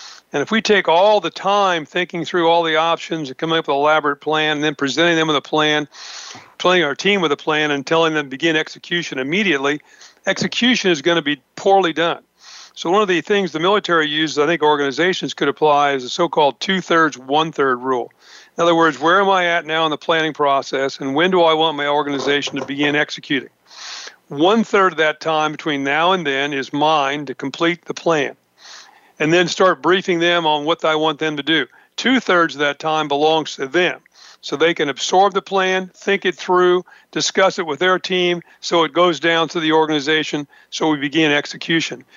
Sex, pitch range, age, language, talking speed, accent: male, 150-180 Hz, 50-69, English, 205 wpm, American